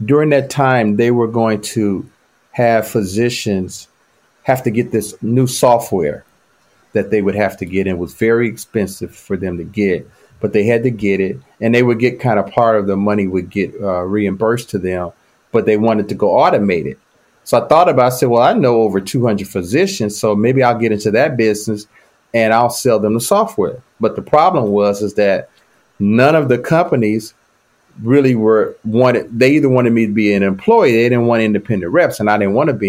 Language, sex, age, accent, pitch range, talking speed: English, male, 40-59, American, 105-130 Hz, 210 wpm